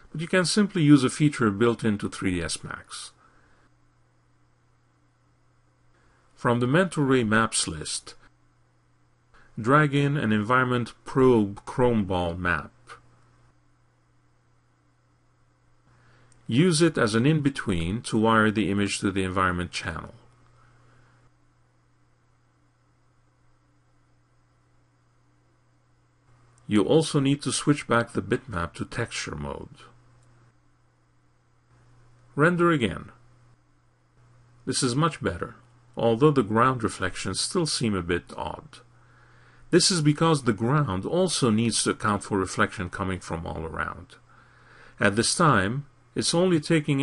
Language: English